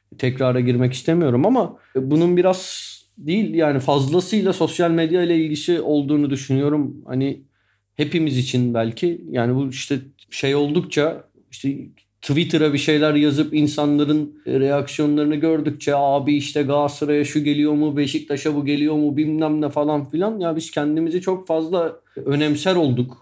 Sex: male